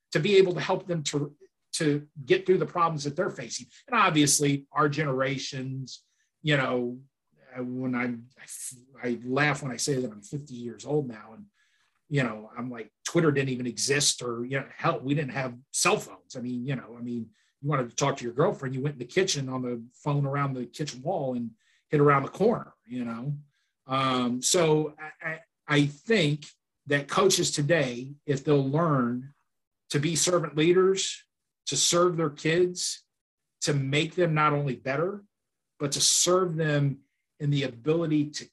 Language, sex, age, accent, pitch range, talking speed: English, male, 40-59, American, 130-155 Hz, 185 wpm